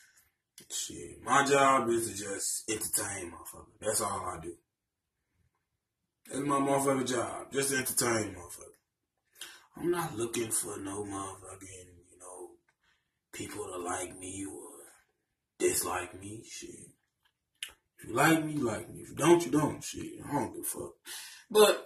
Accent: American